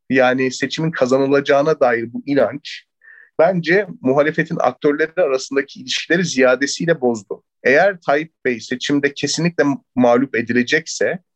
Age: 40-59